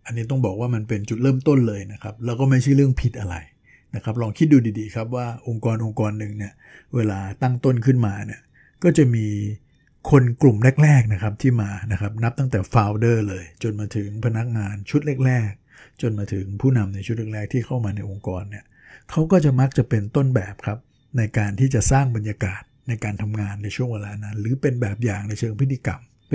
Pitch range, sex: 105-130 Hz, male